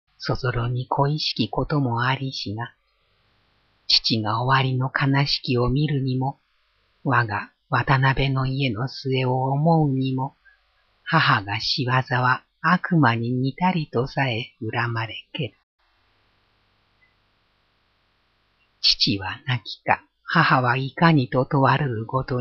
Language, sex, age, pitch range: Japanese, female, 50-69, 110-140 Hz